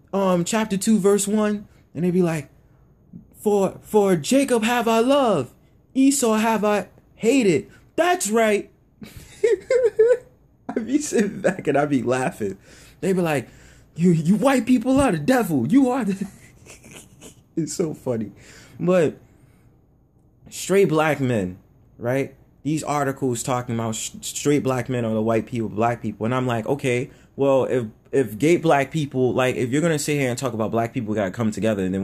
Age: 20-39